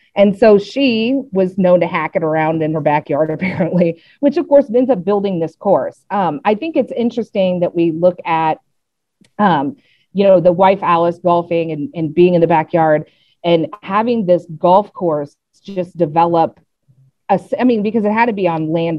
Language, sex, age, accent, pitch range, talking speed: English, female, 40-59, American, 160-210 Hz, 185 wpm